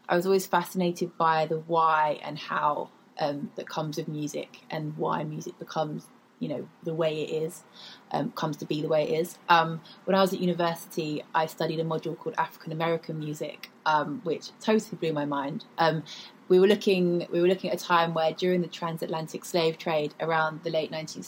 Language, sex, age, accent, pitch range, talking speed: English, female, 20-39, British, 160-180 Hz, 205 wpm